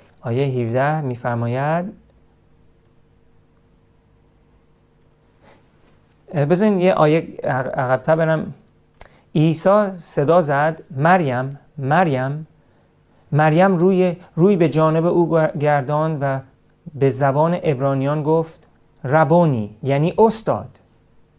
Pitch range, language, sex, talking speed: 135-175 Hz, Persian, male, 80 wpm